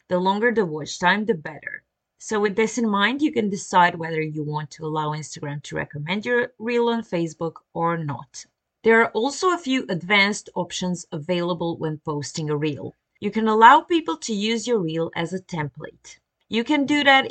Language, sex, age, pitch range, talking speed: English, female, 30-49, 170-230 Hz, 195 wpm